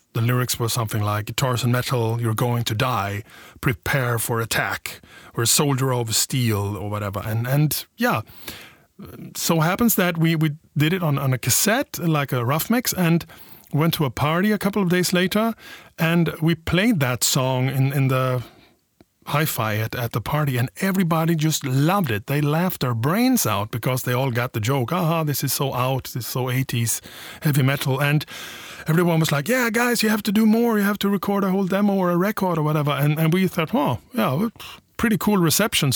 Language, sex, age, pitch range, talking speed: English, male, 30-49, 130-180 Hz, 205 wpm